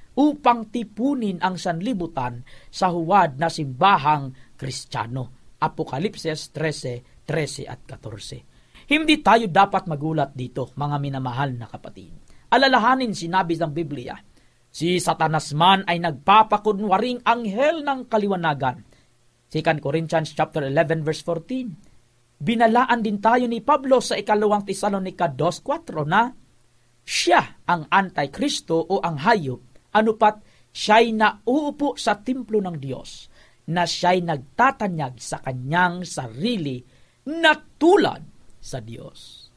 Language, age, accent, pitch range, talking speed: Filipino, 40-59, native, 145-225 Hz, 115 wpm